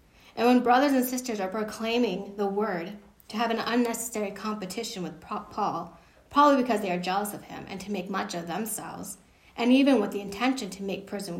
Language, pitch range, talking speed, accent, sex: English, 180-250 Hz, 195 wpm, American, female